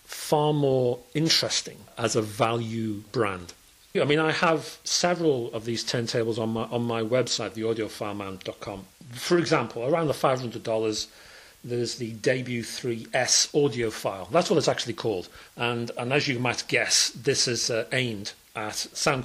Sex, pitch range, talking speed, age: male, 110-135 Hz, 160 wpm, 40-59